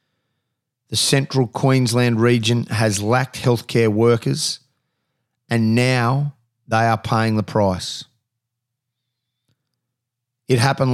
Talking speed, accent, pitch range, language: 95 wpm, Australian, 115-130 Hz, English